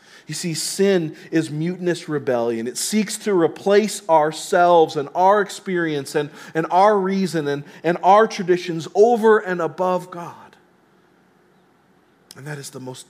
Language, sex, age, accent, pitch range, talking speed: English, male, 40-59, American, 140-195 Hz, 140 wpm